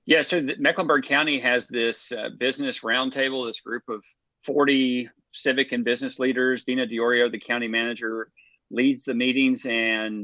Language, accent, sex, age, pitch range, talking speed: English, American, male, 40-59, 115-150 Hz, 150 wpm